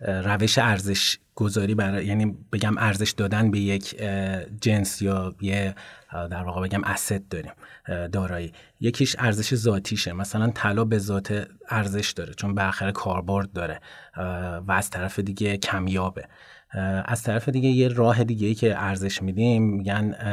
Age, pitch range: 30-49, 95-110 Hz